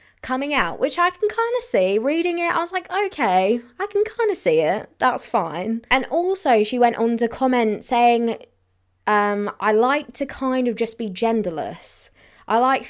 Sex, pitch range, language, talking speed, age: female, 200-255 Hz, English, 190 wpm, 20-39